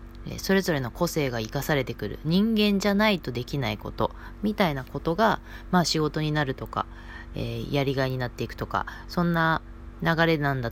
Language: Japanese